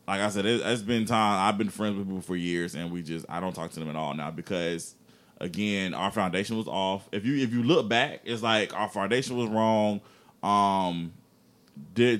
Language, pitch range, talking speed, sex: English, 100-120 Hz, 215 wpm, male